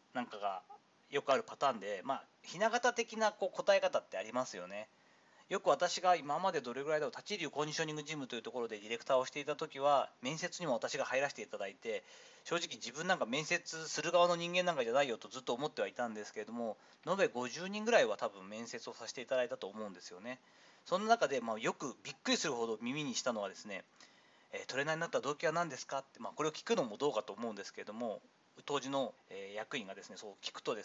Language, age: Japanese, 40-59